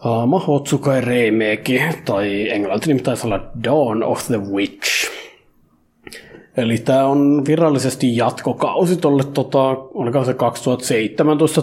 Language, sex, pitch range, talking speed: Finnish, male, 120-145 Hz, 105 wpm